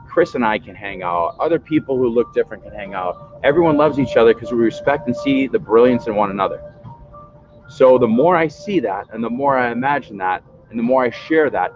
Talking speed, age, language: 235 wpm, 30-49, English